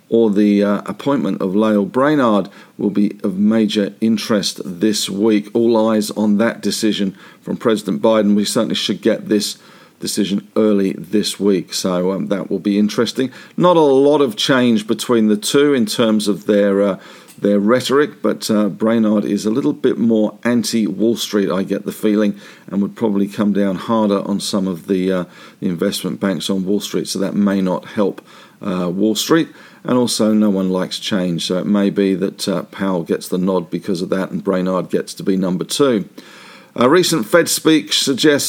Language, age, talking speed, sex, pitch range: English, 50-69, 190 wpm, male, 100-130 Hz